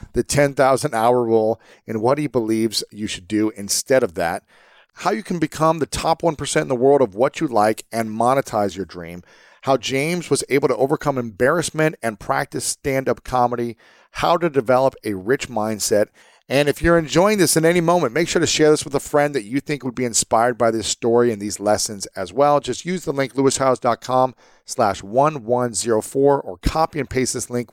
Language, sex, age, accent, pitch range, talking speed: English, male, 40-59, American, 115-160 Hz, 195 wpm